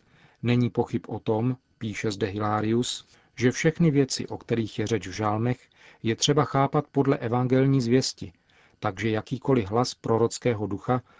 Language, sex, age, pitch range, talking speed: Czech, male, 40-59, 110-130 Hz, 145 wpm